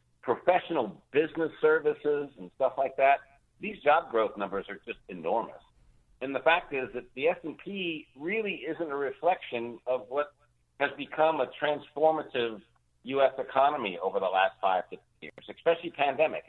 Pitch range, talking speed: 120-165 Hz, 155 wpm